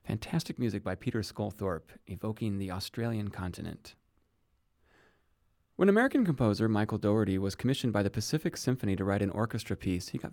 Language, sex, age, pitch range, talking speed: English, male, 30-49, 95-115 Hz, 155 wpm